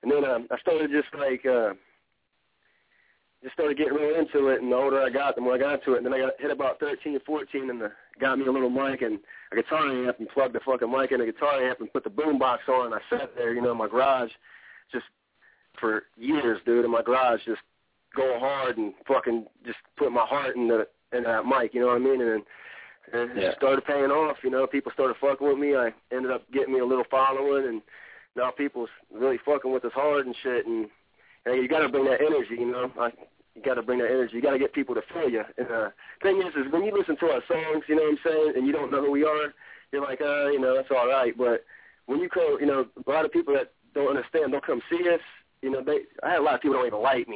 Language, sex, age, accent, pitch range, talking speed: English, male, 30-49, American, 125-155 Hz, 265 wpm